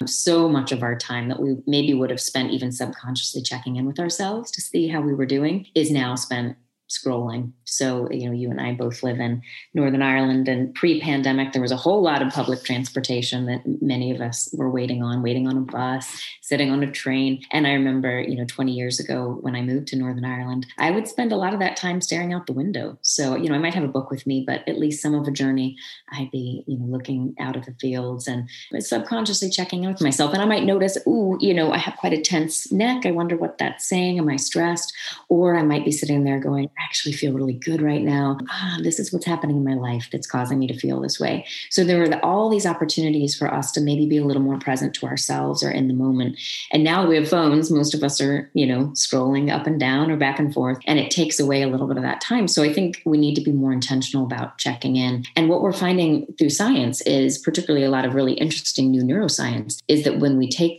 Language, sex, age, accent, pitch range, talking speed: English, female, 30-49, American, 130-160 Hz, 245 wpm